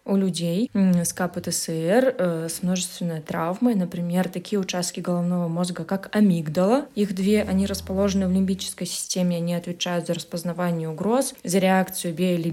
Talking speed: 145 wpm